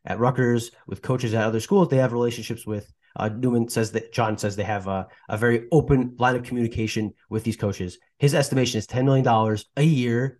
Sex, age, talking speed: male, 30-49, 210 wpm